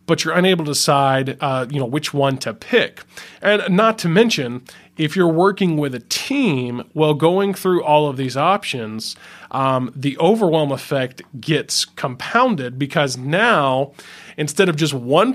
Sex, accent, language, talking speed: male, American, English, 160 wpm